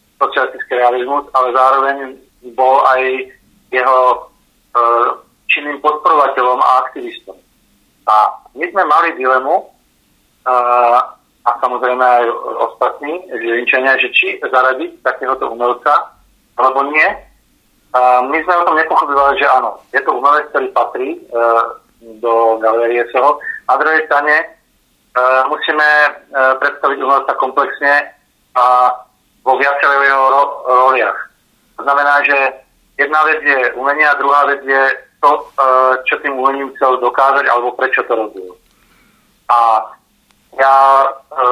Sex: male